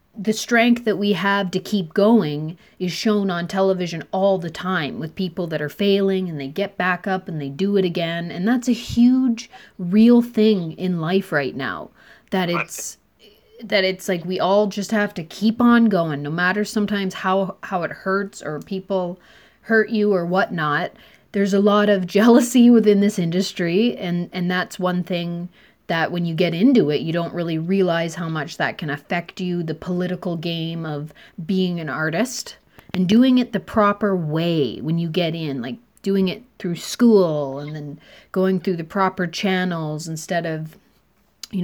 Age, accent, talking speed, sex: 30-49, American, 185 wpm, female